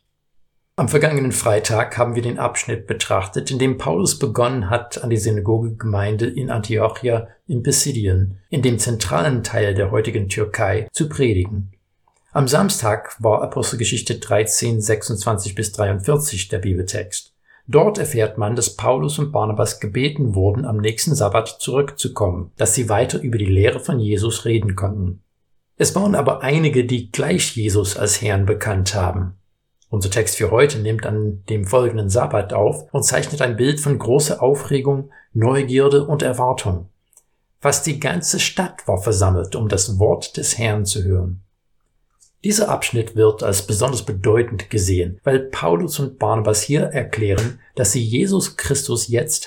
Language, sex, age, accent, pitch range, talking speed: German, male, 60-79, German, 105-130 Hz, 150 wpm